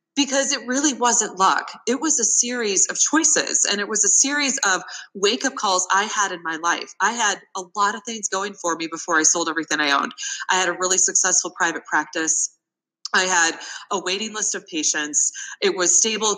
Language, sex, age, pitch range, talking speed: English, female, 20-39, 180-240 Hz, 210 wpm